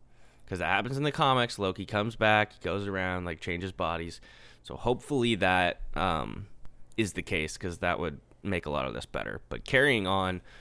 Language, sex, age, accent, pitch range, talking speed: English, male, 10-29, American, 90-110 Hz, 185 wpm